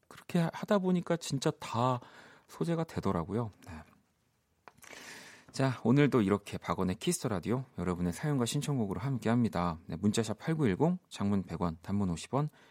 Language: Korean